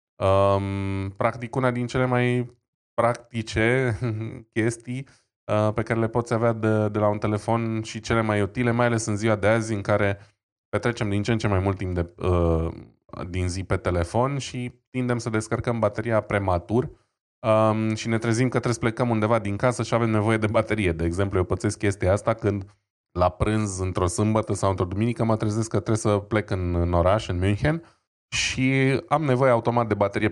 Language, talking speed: Romanian, 195 wpm